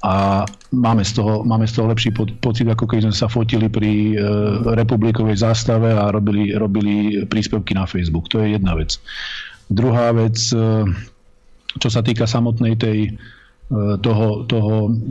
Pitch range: 110-120 Hz